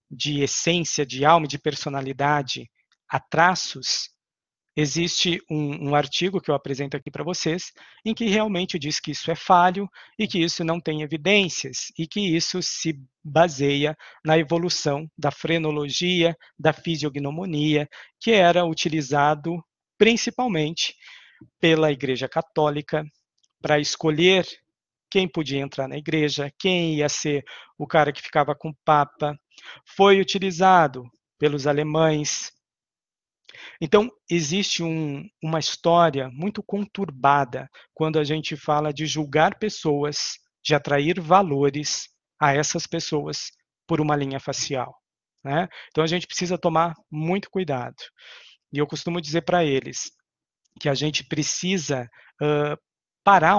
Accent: Brazilian